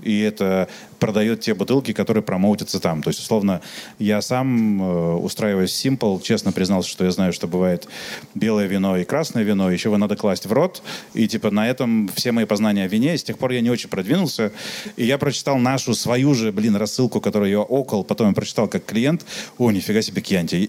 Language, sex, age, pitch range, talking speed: Russian, male, 30-49, 100-125 Hz, 205 wpm